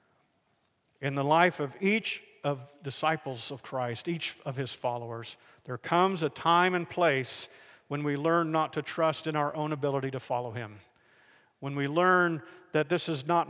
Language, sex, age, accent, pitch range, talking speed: English, male, 50-69, American, 135-175 Hz, 175 wpm